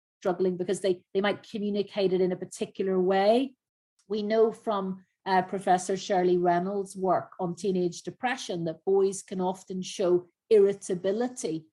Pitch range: 175-205 Hz